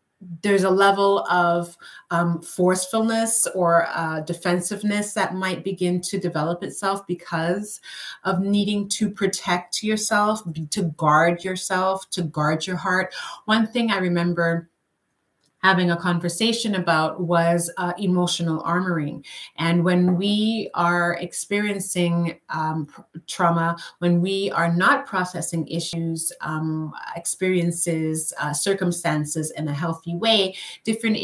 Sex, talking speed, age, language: female, 120 wpm, 30-49, English